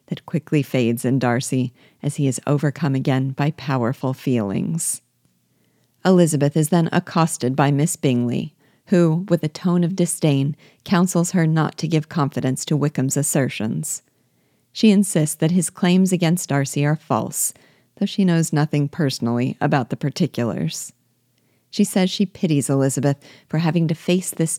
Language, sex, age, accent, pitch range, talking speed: English, female, 40-59, American, 135-170 Hz, 150 wpm